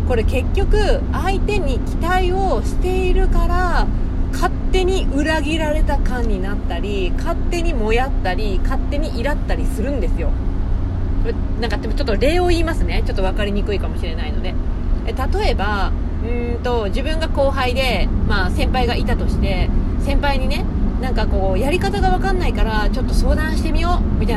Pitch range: 80-95 Hz